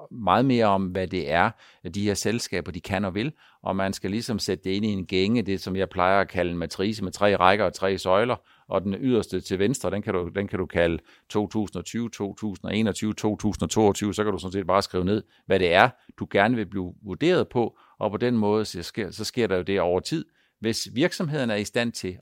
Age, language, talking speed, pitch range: 50-69, Danish, 240 wpm, 95-120 Hz